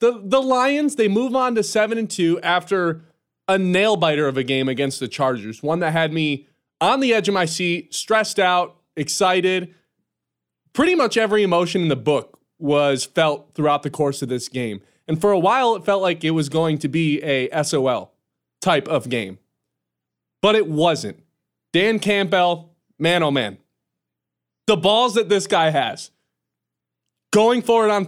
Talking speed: 175 wpm